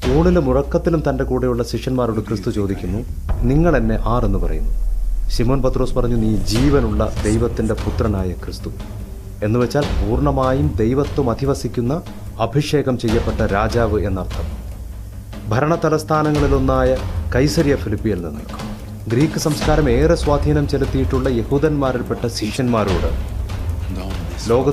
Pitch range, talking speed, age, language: 100-140 Hz, 75 wpm, 30-49, English